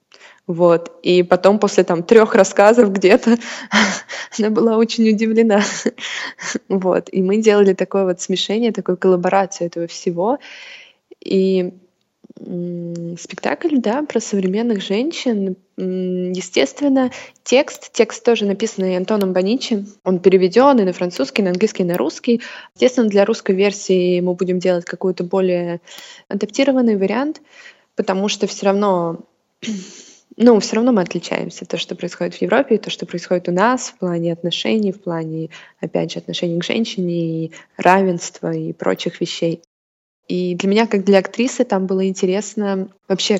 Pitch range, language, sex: 180-220 Hz, Russian, female